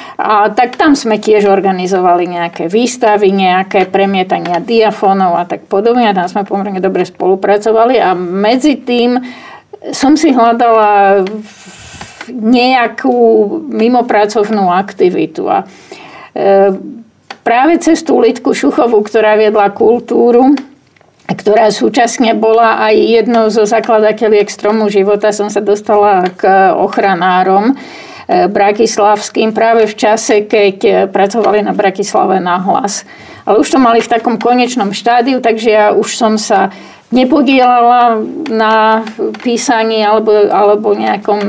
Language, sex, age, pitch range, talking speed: Slovak, female, 50-69, 205-240 Hz, 115 wpm